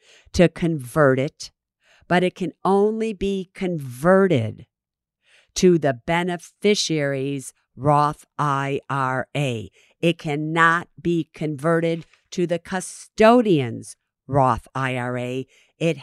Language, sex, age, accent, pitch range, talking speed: English, female, 50-69, American, 135-180 Hz, 90 wpm